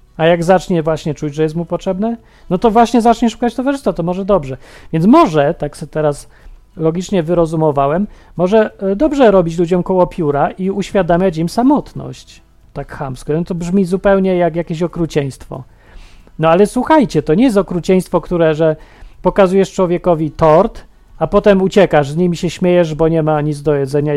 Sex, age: male, 40-59